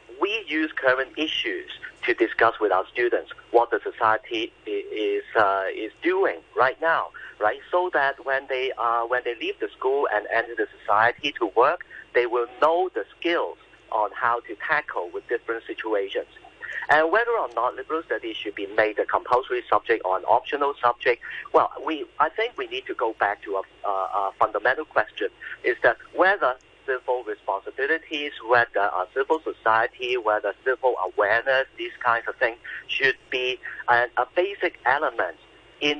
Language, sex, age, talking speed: English, male, 50-69, 170 wpm